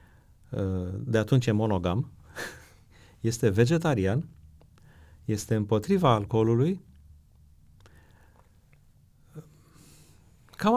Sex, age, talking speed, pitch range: male, 30-49, 55 wpm, 100-125 Hz